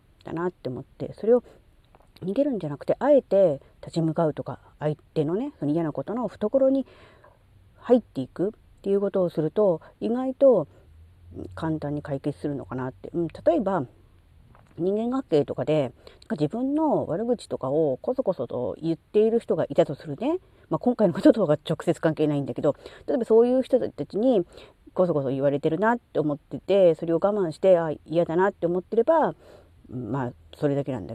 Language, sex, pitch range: Japanese, female, 150-240 Hz